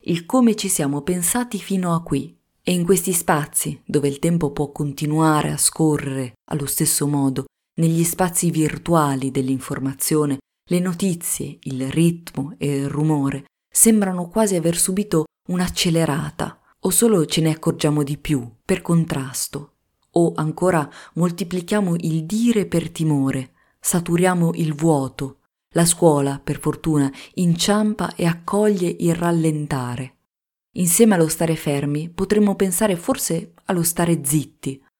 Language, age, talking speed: Italian, 20-39, 130 wpm